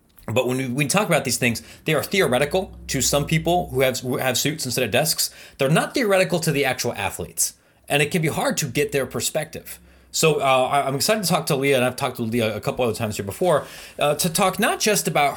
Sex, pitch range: male, 95-145 Hz